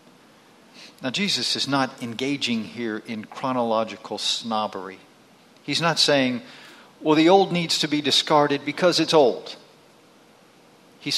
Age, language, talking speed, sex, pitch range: 50-69, English, 125 wpm, male, 125-160 Hz